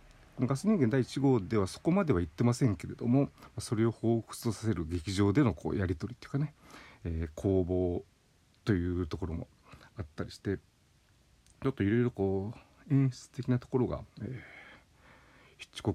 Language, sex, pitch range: Japanese, male, 95-125 Hz